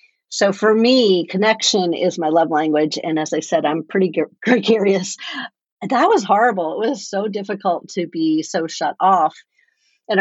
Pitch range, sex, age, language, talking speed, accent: 170-200 Hz, female, 50-69, English, 165 wpm, American